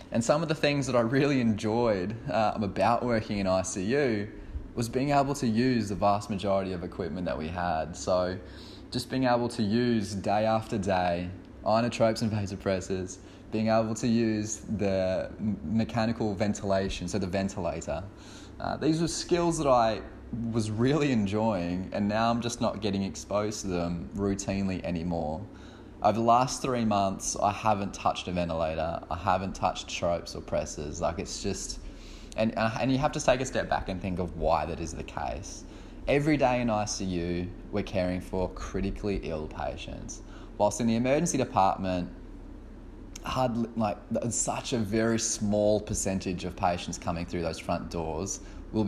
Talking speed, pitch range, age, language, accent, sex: 165 wpm, 90-115 Hz, 20-39, English, Australian, male